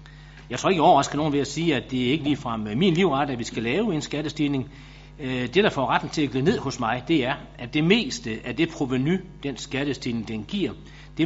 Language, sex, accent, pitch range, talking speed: Danish, male, native, 120-150 Hz, 245 wpm